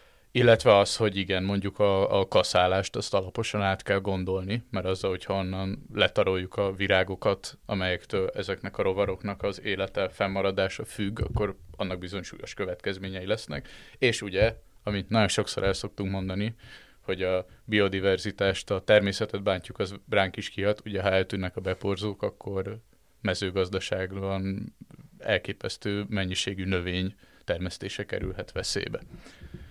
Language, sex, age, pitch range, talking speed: Hungarian, male, 20-39, 95-105 Hz, 125 wpm